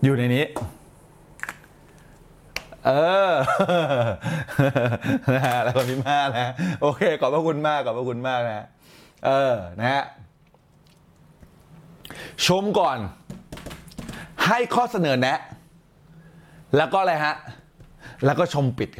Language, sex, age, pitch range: Thai, male, 20-39, 130-180 Hz